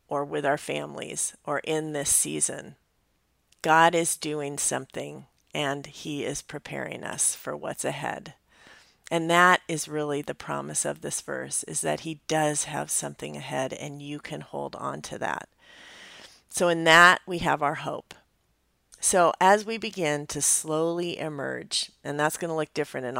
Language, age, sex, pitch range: English, 40-59, female, 130-165 Hz